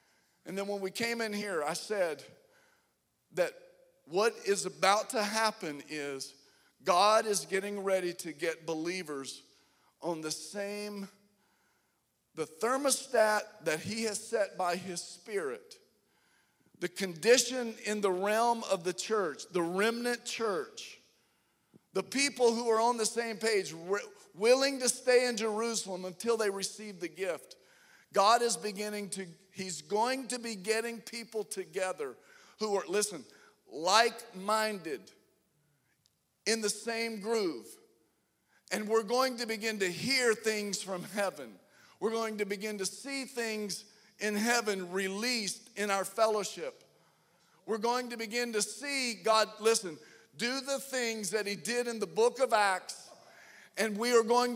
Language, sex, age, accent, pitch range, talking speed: English, male, 50-69, American, 195-240 Hz, 140 wpm